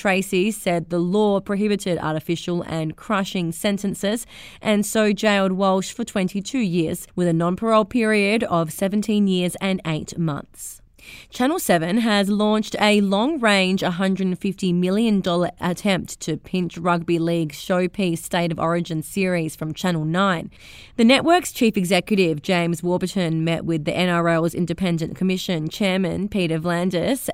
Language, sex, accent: English, female, Australian